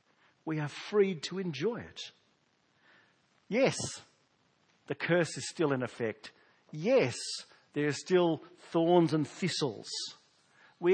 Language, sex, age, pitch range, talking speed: English, male, 50-69, 145-195 Hz, 115 wpm